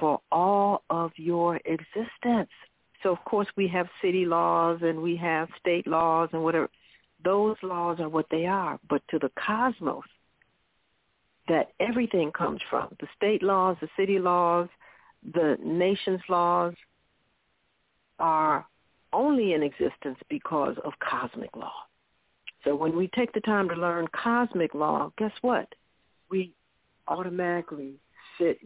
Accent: American